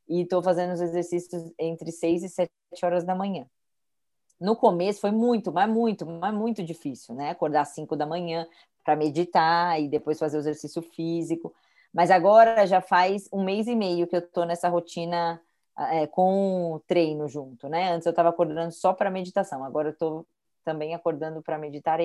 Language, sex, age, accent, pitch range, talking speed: Portuguese, female, 20-39, Brazilian, 165-205 Hz, 185 wpm